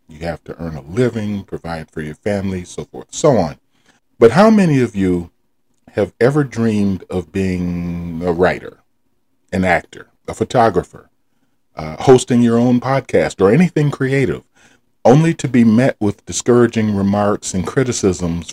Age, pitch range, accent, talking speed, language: 40-59, 90-120 Hz, American, 150 wpm, English